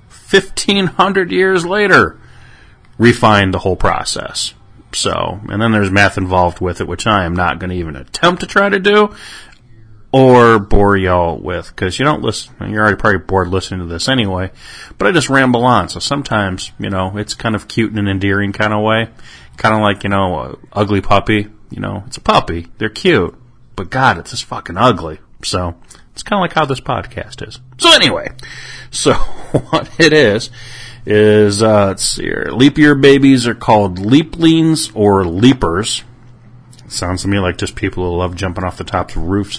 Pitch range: 100-125 Hz